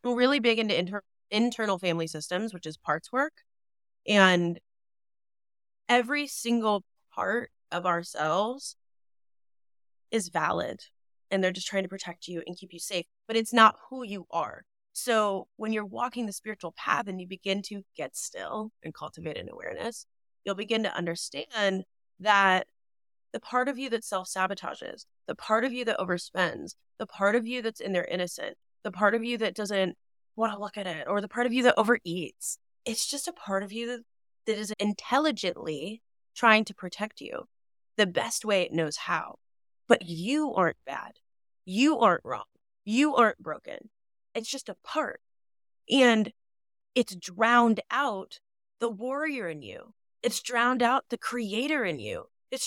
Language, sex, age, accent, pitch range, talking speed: English, female, 20-39, American, 180-235 Hz, 165 wpm